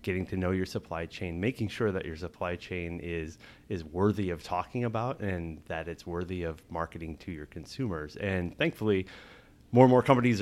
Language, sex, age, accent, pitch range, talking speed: English, male, 30-49, American, 85-105 Hz, 190 wpm